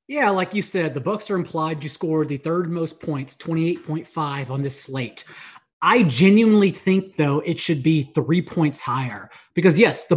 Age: 30-49